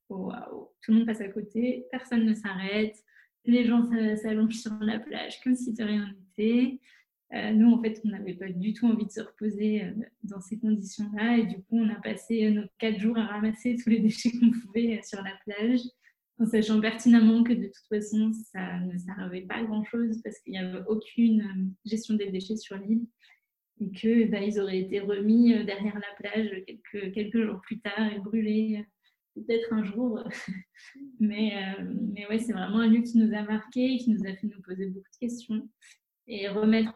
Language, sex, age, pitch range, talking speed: French, female, 20-39, 210-225 Hz, 195 wpm